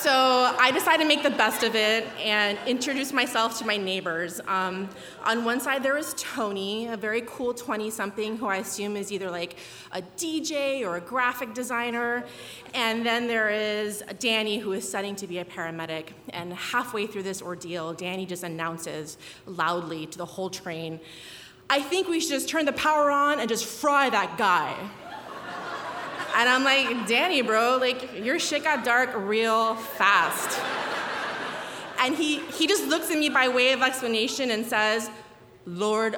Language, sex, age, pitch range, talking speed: English, female, 20-39, 205-270 Hz, 170 wpm